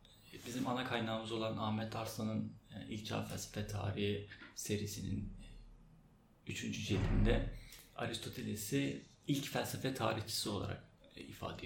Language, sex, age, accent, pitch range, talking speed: Turkish, male, 30-49, native, 100-135 Hz, 100 wpm